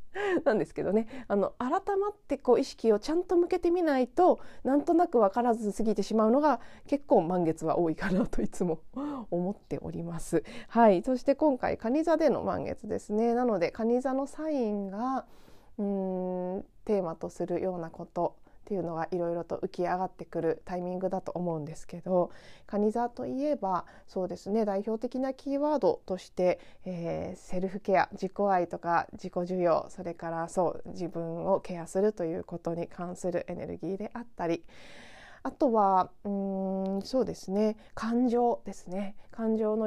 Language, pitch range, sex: Japanese, 175-240 Hz, female